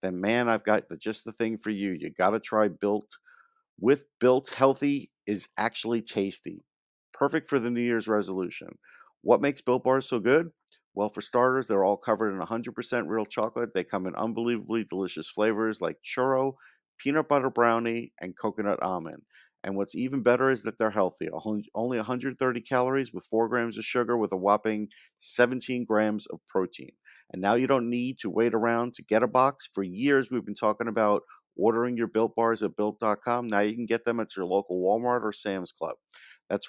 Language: English